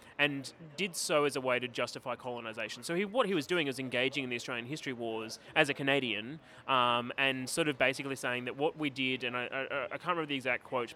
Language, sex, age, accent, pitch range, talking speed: English, male, 20-39, Australian, 120-145 Hz, 240 wpm